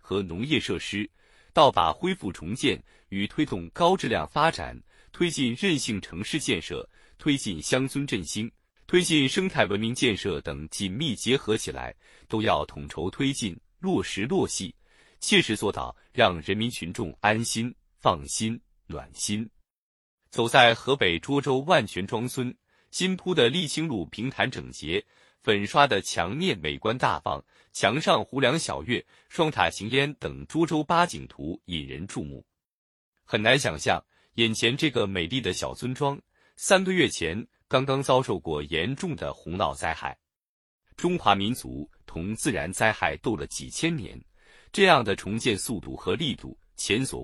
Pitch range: 95-140 Hz